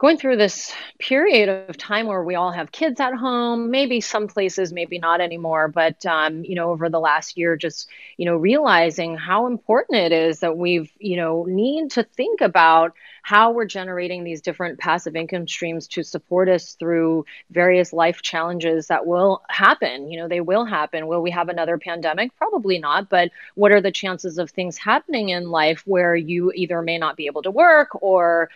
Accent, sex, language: American, female, English